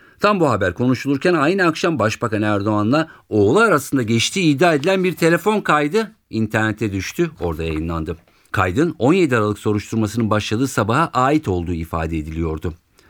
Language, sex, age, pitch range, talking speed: Turkish, male, 50-69, 105-160 Hz, 135 wpm